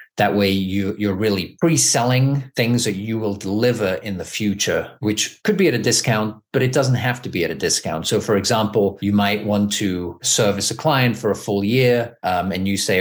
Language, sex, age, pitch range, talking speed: English, male, 40-59, 95-115 Hz, 210 wpm